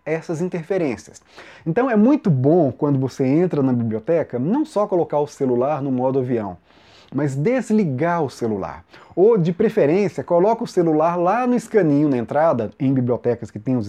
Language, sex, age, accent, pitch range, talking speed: Portuguese, male, 30-49, Brazilian, 135-205 Hz, 170 wpm